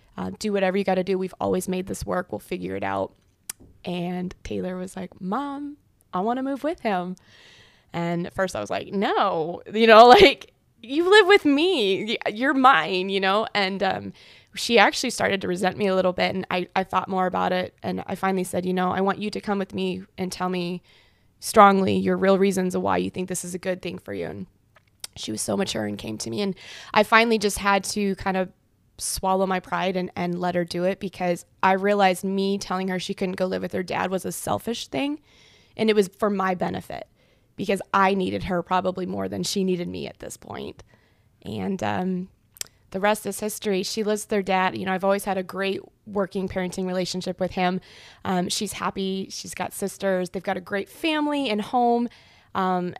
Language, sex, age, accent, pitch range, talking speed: English, female, 20-39, American, 180-200 Hz, 215 wpm